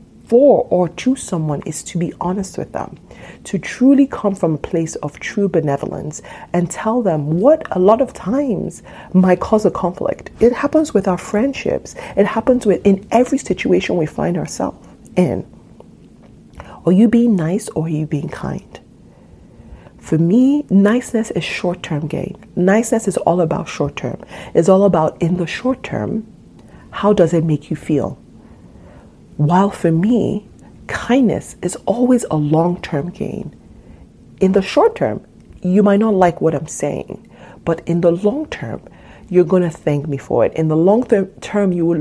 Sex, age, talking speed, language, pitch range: female, 40-59, 165 wpm, English, 160-205 Hz